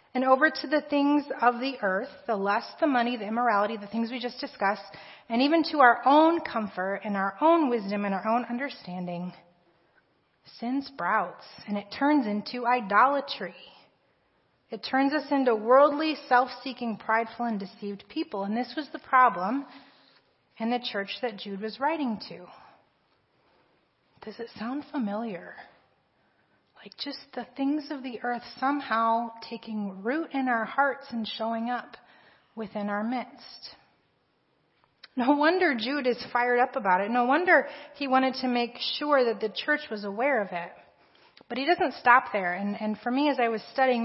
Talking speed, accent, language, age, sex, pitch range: 165 wpm, American, English, 30-49, female, 215-275 Hz